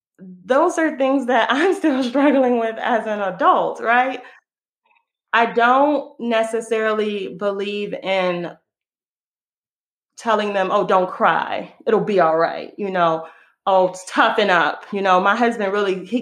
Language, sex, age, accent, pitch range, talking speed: English, female, 30-49, American, 175-215 Hz, 135 wpm